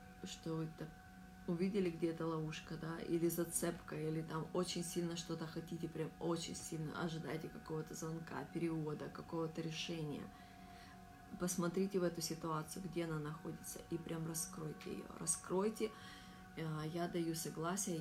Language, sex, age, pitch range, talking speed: Russian, female, 30-49, 160-180 Hz, 125 wpm